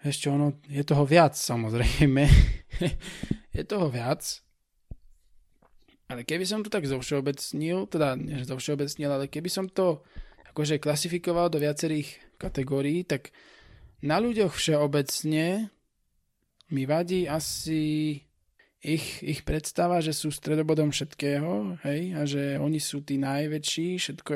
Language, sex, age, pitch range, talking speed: Slovak, male, 20-39, 140-155 Hz, 125 wpm